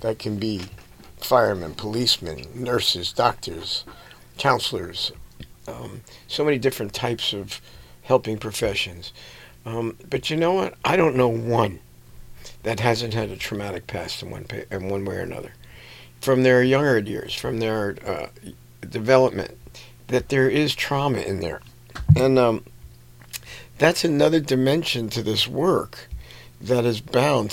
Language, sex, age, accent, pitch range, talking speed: English, male, 50-69, American, 100-130 Hz, 135 wpm